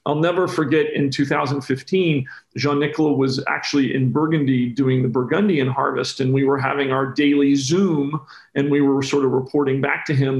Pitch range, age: 140-195 Hz, 40-59